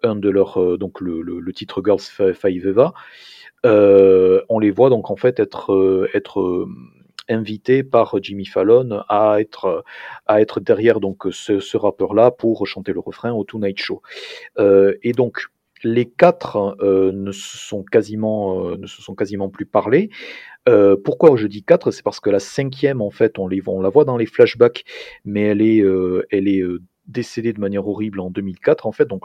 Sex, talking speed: male, 190 wpm